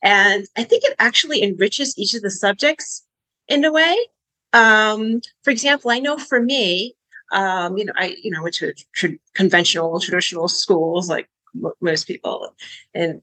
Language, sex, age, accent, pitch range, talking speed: English, female, 30-49, American, 180-245 Hz, 170 wpm